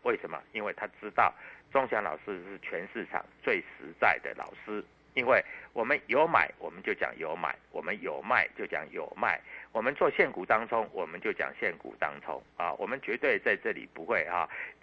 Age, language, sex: 60-79, Chinese, male